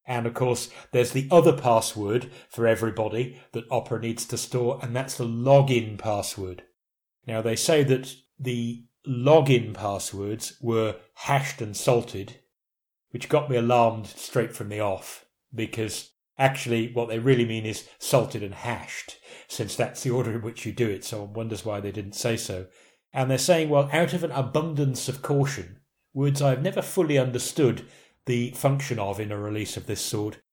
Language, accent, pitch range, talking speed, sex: English, British, 110-130 Hz, 175 wpm, male